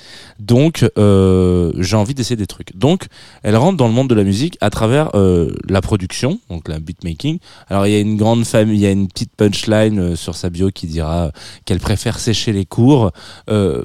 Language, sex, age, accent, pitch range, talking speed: French, male, 20-39, French, 100-125 Hz, 190 wpm